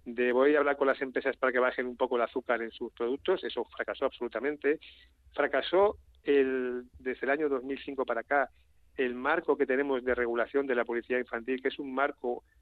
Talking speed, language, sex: 200 wpm, Spanish, male